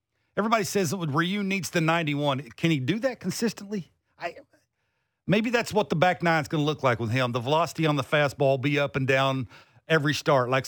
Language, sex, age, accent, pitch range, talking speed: English, male, 40-59, American, 130-175 Hz, 220 wpm